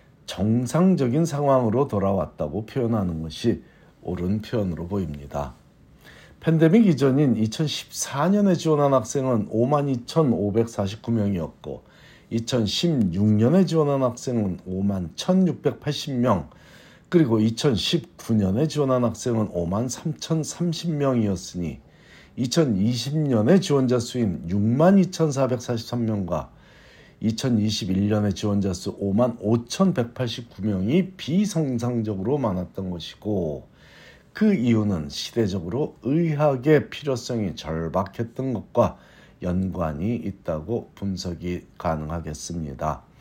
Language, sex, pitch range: Korean, male, 100-145 Hz